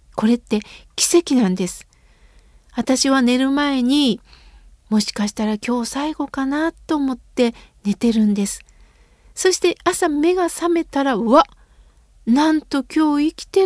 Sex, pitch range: female, 250-335 Hz